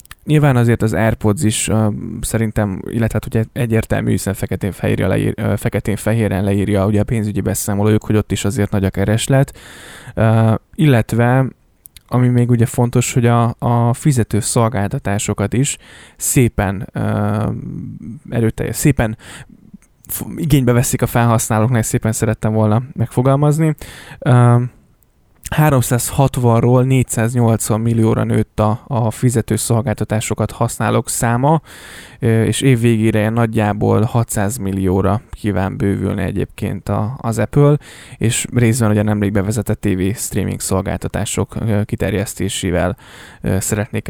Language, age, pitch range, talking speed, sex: Hungarian, 10-29, 105-125 Hz, 115 wpm, male